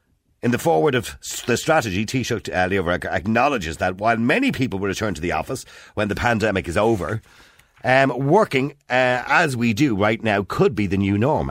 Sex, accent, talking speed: male, Irish, 200 wpm